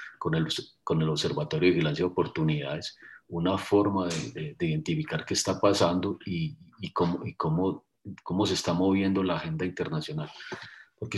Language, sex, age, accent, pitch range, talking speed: Spanish, male, 40-59, Colombian, 85-100 Hz, 165 wpm